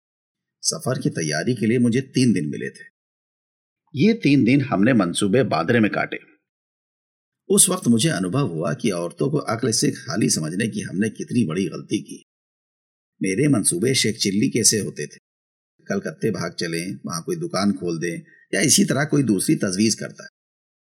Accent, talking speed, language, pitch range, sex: native, 165 wpm, Hindi, 105-155 Hz, male